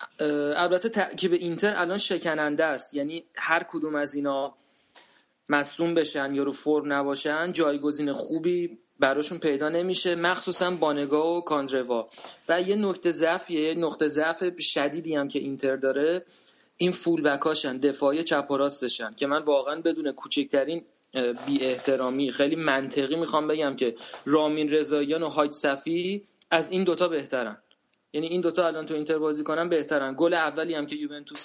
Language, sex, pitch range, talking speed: Persian, male, 145-175 Hz, 150 wpm